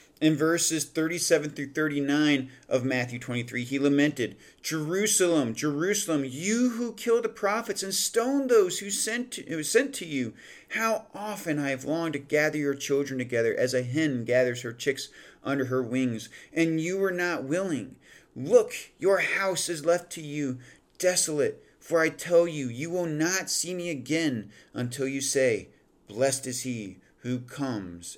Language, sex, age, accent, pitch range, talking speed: English, male, 40-59, American, 125-170 Hz, 165 wpm